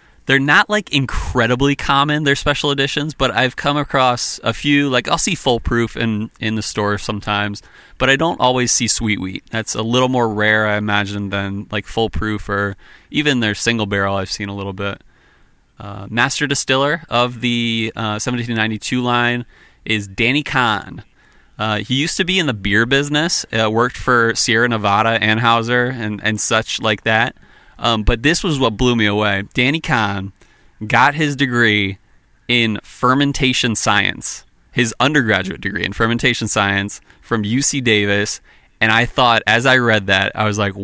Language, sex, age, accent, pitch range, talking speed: English, male, 30-49, American, 105-125 Hz, 170 wpm